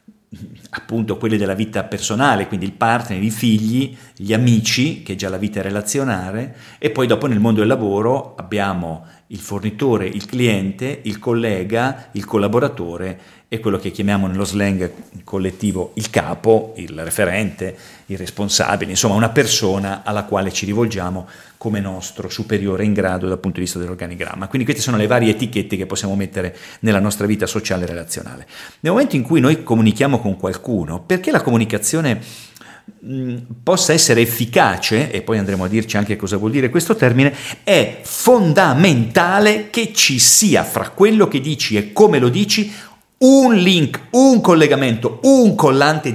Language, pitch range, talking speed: Italian, 100-150 Hz, 160 wpm